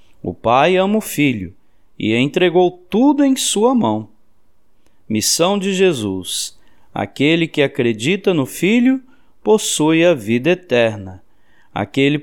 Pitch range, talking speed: 115-185 Hz, 120 wpm